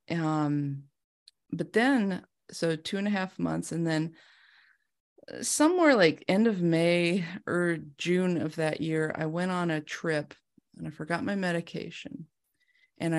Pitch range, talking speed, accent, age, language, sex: 145-180 Hz, 145 wpm, American, 30-49, English, female